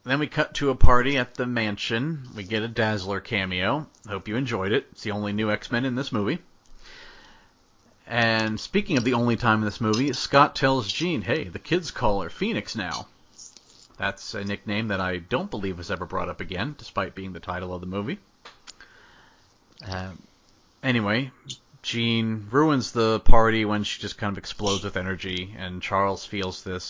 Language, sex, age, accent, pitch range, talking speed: English, male, 30-49, American, 95-115 Hz, 185 wpm